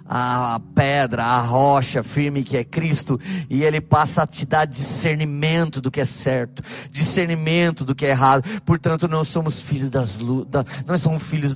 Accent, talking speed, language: Brazilian, 175 wpm, Portuguese